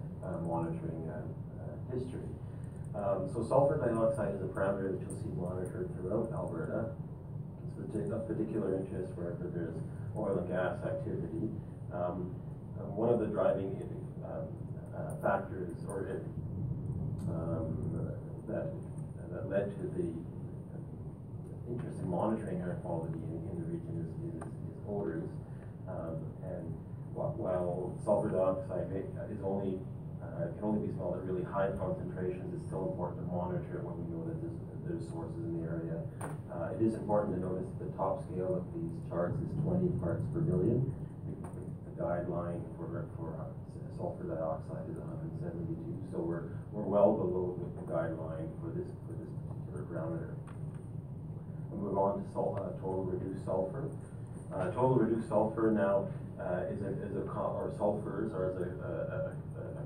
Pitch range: 100-145 Hz